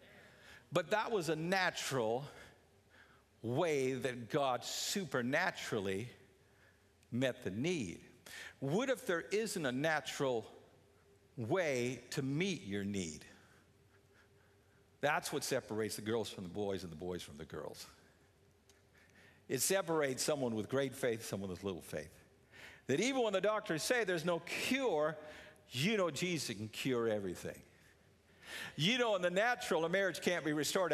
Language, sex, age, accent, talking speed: English, male, 50-69, American, 140 wpm